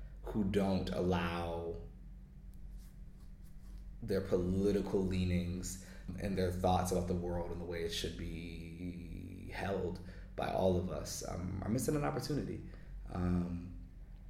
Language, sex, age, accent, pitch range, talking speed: Dutch, male, 20-39, American, 90-100 Hz, 120 wpm